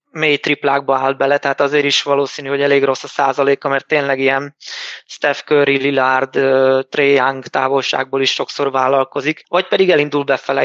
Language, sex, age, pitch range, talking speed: Hungarian, male, 20-39, 135-150 Hz, 165 wpm